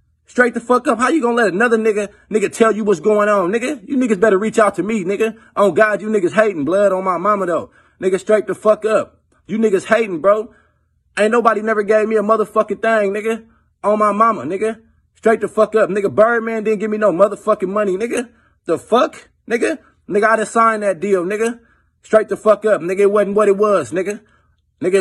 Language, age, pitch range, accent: English, 20-39, 195-220 Hz, American